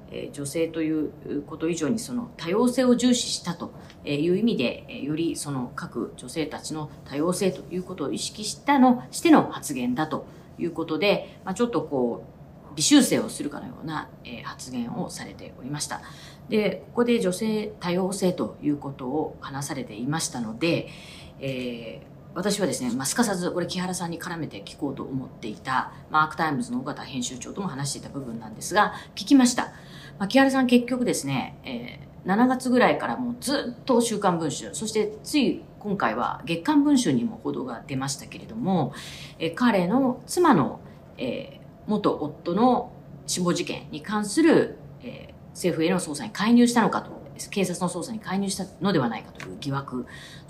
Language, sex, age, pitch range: Japanese, female, 40-59, 155-240 Hz